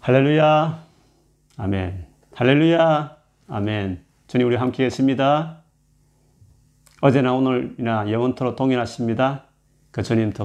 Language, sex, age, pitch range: Korean, male, 30-49, 95-130 Hz